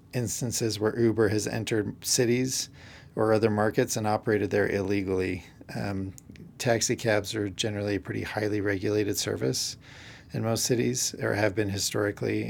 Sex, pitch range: male, 100-120 Hz